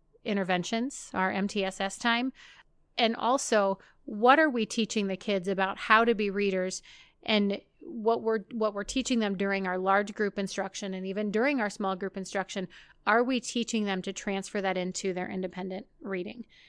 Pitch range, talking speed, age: 195-230 Hz, 165 wpm, 30-49